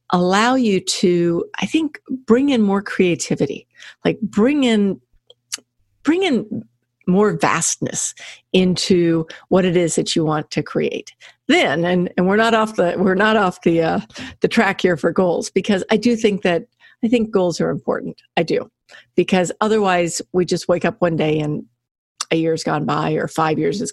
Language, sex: English, female